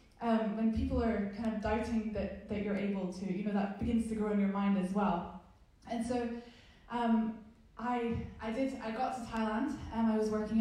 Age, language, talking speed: 10-29, English, 210 wpm